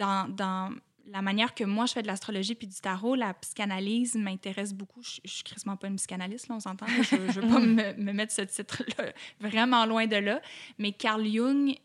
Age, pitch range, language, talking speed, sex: 10-29, 195-235 Hz, French, 220 wpm, female